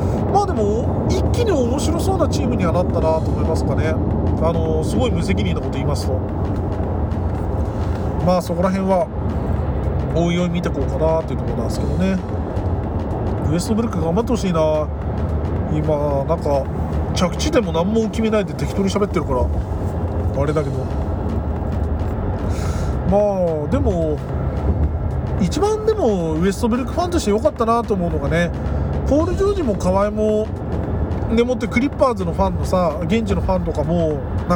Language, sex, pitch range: Japanese, male, 80-105 Hz